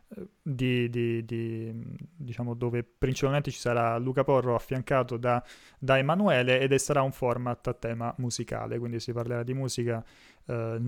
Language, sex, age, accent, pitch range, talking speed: Italian, male, 30-49, native, 120-135 Hz, 150 wpm